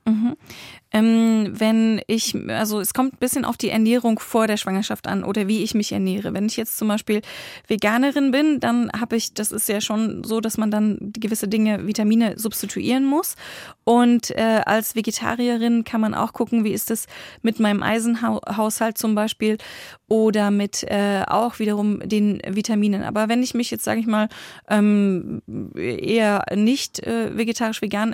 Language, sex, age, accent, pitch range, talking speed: German, female, 20-39, German, 210-235 Hz, 175 wpm